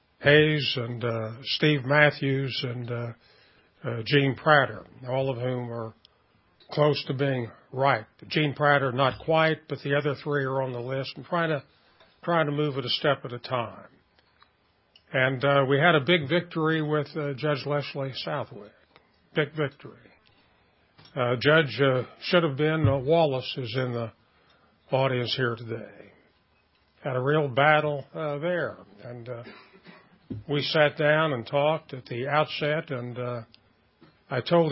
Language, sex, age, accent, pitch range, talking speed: English, male, 50-69, American, 125-150 Hz, 155 wpm